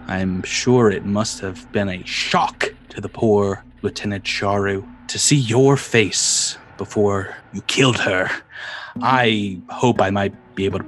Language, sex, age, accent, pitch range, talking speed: English, male, 30-49, American, 95-120 Hz, 155 wpm